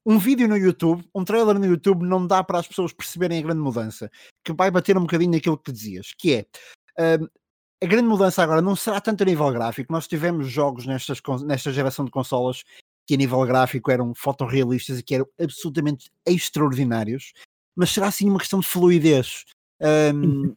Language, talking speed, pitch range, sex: Portuguese, 190 wpm, 125-170 Hz, male